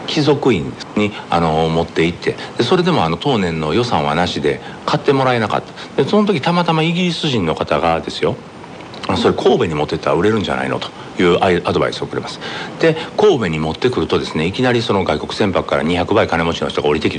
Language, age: Japanese, 60-79